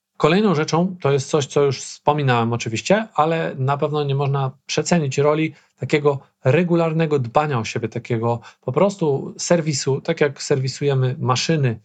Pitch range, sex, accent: 130-165 Hz, male, native